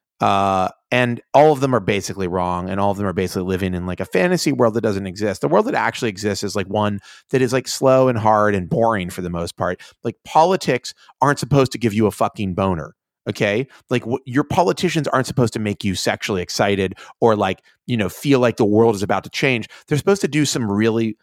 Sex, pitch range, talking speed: male, 100-130 Hz, 230 wpm